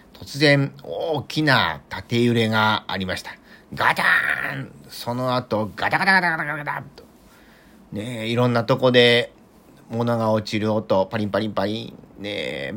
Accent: native